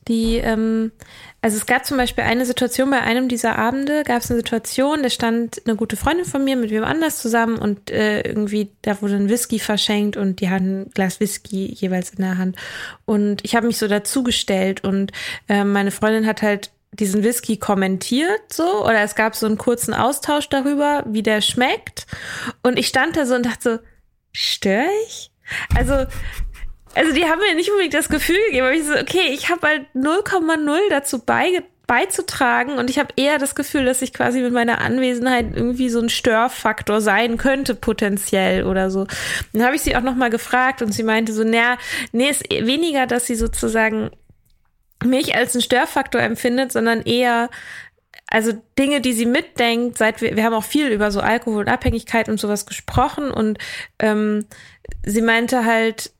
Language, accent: German, German